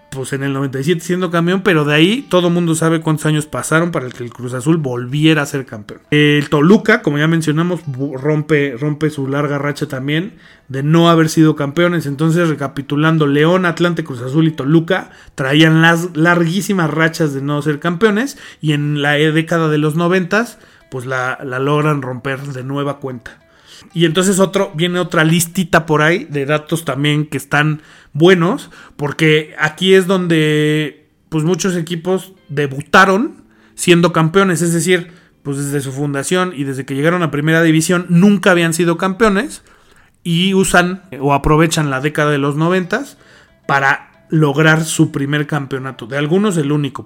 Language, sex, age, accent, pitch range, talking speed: Spanish, male, 30-49, Mexican, 140-175 Hz, 165 wpm